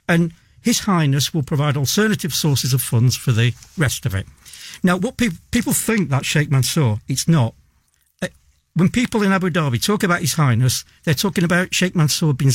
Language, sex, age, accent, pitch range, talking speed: English, male, 60-79, British, 120-175 Hz, 185 wpm